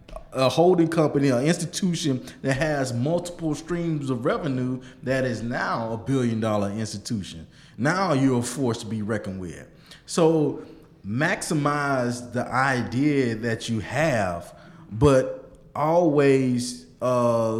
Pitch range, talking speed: 120-165 Hz, 125 wpm